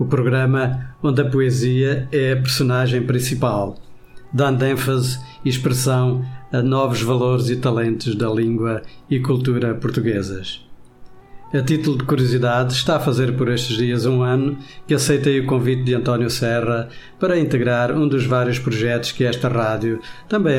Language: Portuguese